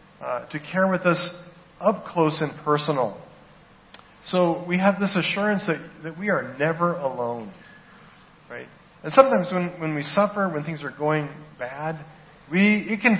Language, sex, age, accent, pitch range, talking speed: English, male, 40-59, American, 150-180 Hz, 160 wpm